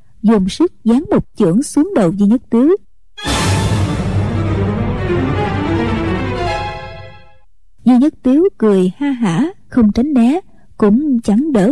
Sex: female